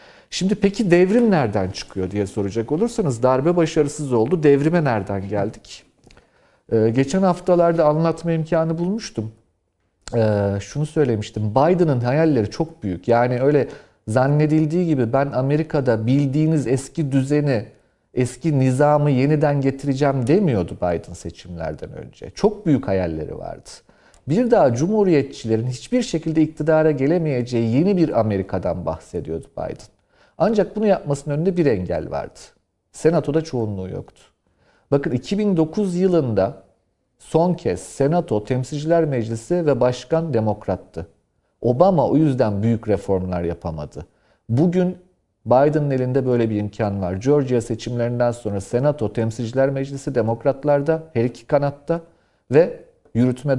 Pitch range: 110-160 Hz